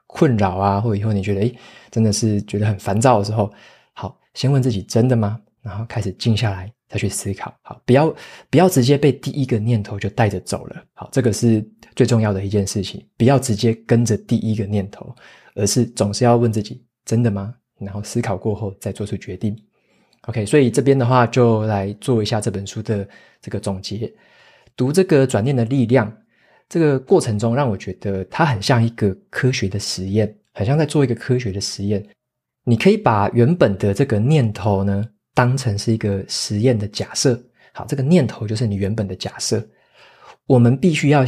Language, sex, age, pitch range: Chinese, male, 20-39, 105-125 Hz